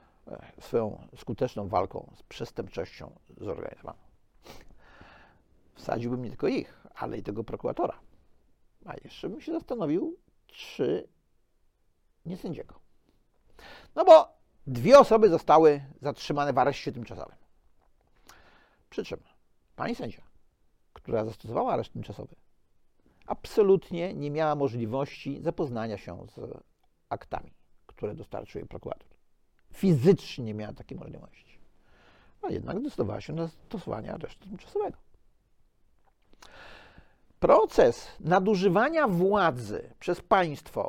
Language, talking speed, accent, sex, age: Polish, 100 wpm, native, male, 50-69